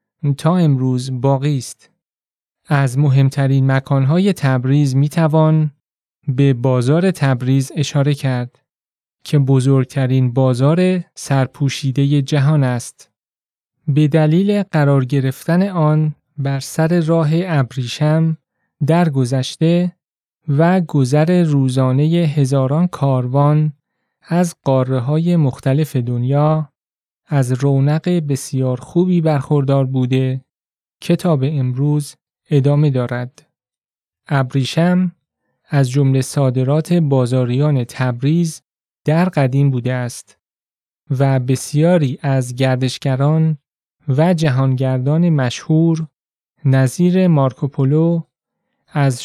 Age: 30-49